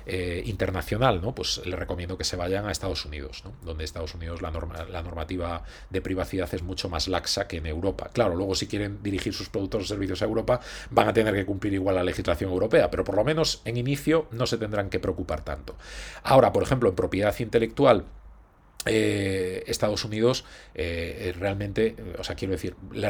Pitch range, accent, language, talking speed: 90-110 Hz, Spanish, Spanish, 200 wpm